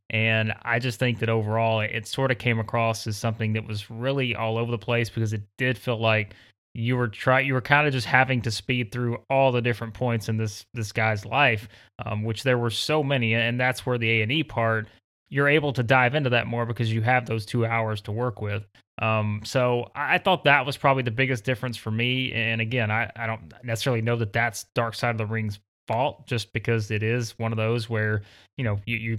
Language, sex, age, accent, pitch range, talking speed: English, male, 20-39, American, 115-130 Hz, 235 wpm